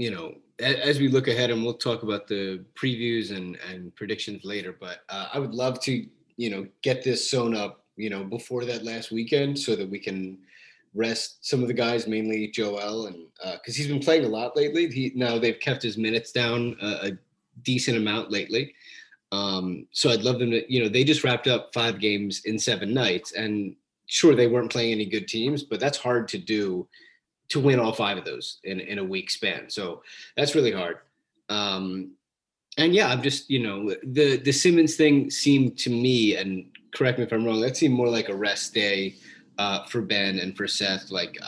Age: 30-49